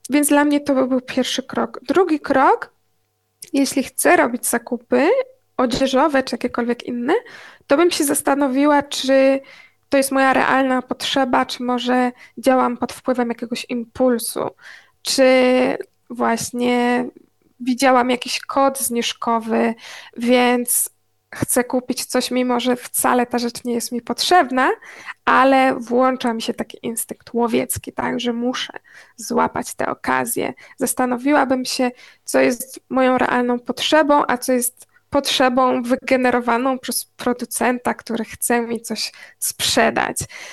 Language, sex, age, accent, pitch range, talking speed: Polish, female, 20-39, native, 240-280 Hz, 125 wpm